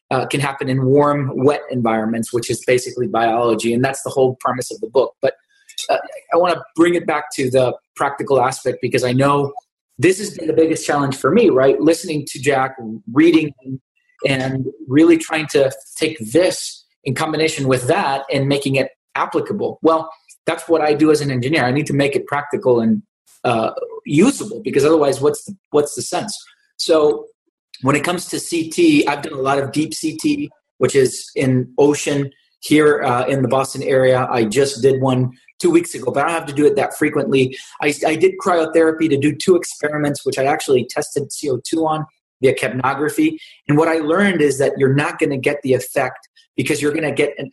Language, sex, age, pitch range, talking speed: English, male, 30-49, 135-170 Hz, 200 wpm